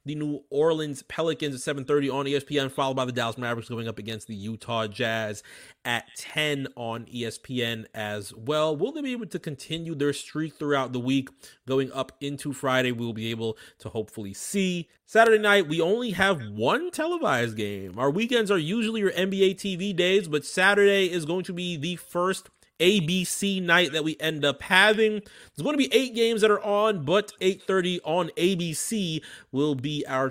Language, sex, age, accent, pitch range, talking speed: English, male, 30-49, American, 120-165 Hz, 185 wpm